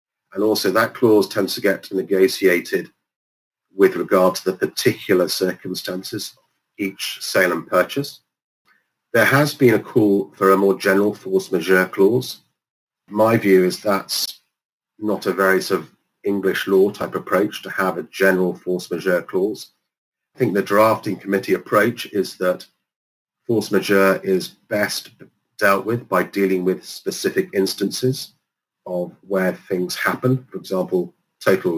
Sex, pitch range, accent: male, 95-110 Hz, British